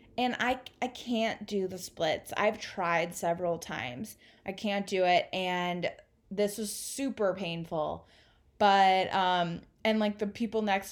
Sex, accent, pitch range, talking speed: female, American, 170-210 Hz, 150 wpm